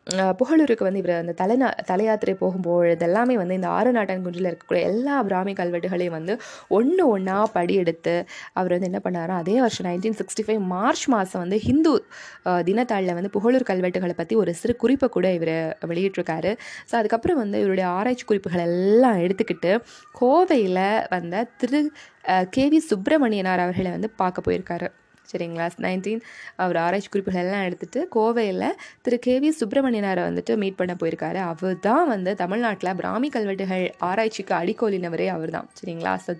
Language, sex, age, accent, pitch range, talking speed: Tamil, female, 20-39, native, 180-235 Hz, 140 wpm